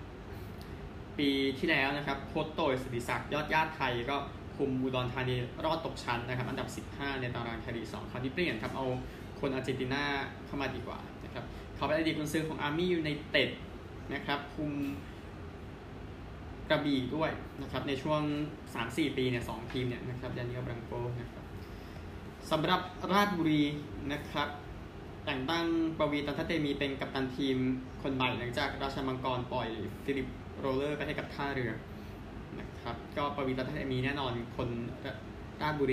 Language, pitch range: Thai, 110-145 Hz